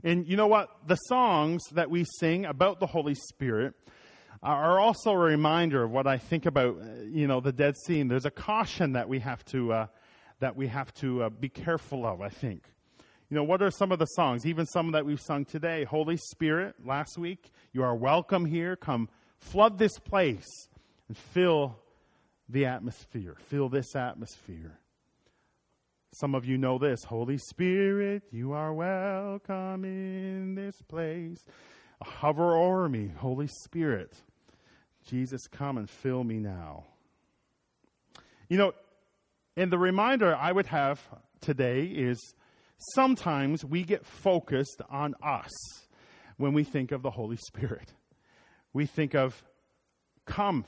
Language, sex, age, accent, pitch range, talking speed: English, male, 40-59, American, 130-175 Hz, 155 wpm